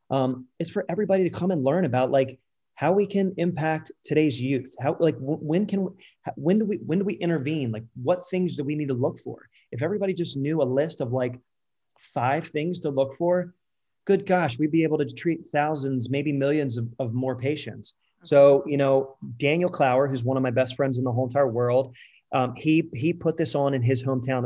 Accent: American